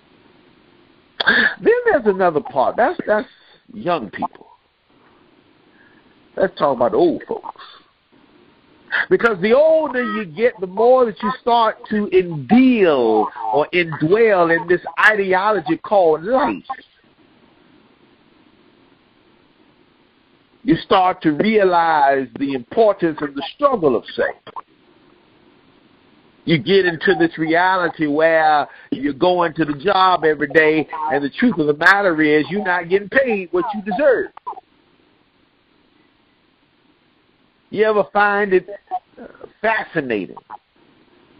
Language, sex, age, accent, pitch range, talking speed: English, male, 50-69, American, 165-265 Hz, 110 wpm